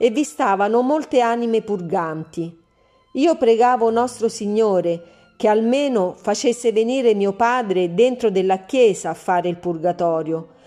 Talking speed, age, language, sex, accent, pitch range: 130 wpm, 40-59, Italian, female, native, 175-245 Hz